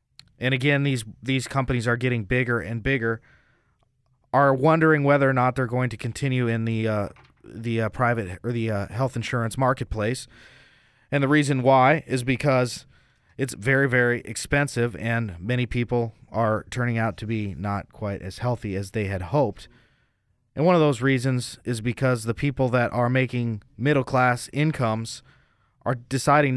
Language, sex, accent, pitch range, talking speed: English, male, American, 110-130 Hz, 165 wpm